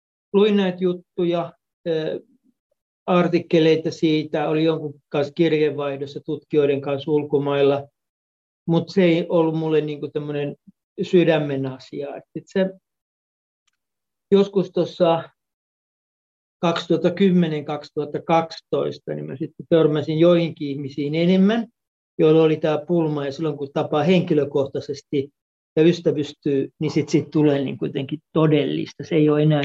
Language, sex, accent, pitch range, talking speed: Finnish, male, native, 140-170 Hz, 105 wpm